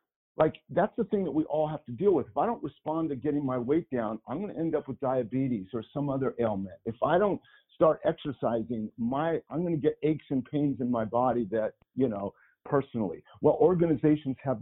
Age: 50-69